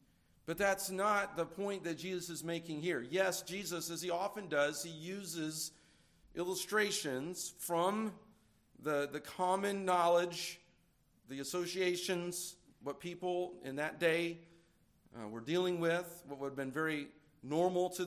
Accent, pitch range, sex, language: American, 165-200 Hz, male, English